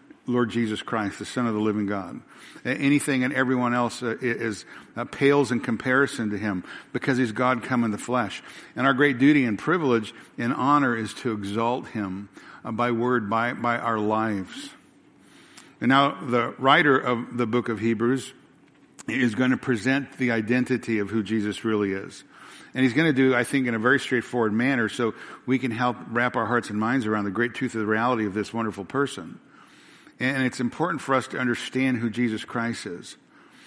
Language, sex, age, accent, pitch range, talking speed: English, male, 60-79, American, 115-135 Hz, 195 wpm